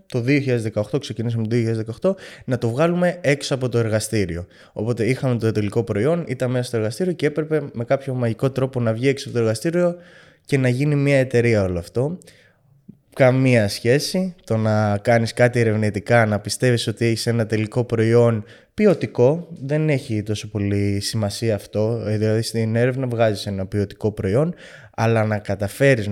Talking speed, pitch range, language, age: 165 wpm, 110-130 Hz, Greek, 20-39